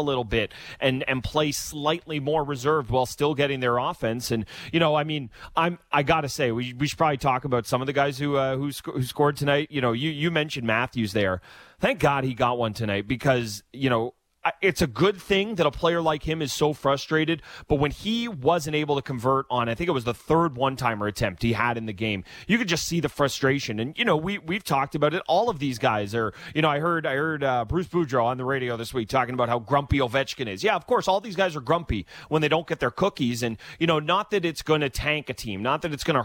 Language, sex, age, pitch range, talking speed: English, male, 30-49, 120-155 Hz, 260 wpm